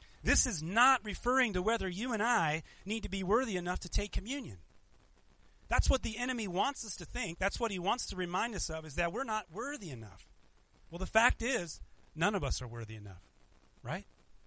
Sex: male